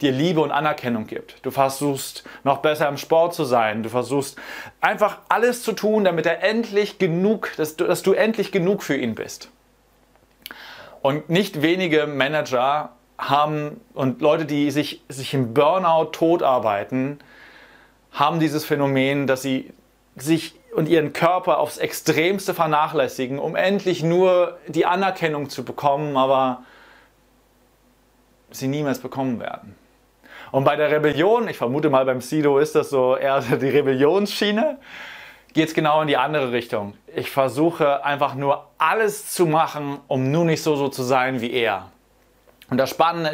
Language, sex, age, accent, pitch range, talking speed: German, male, 30-49, German, 130-165 Hz, 155 wpm